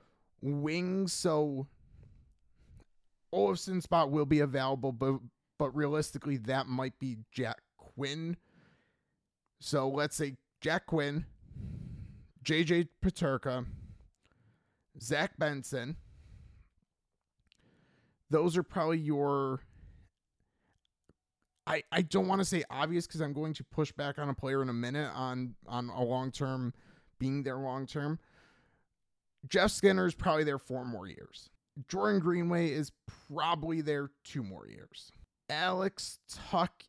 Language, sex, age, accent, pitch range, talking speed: English, male, 30-49, American, 120-155 Hz, 120 wpm